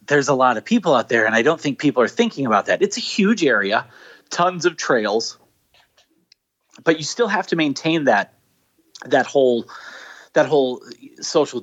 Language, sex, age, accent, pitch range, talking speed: English, male, 30-49, American, 120-185 Hz, 180 wpm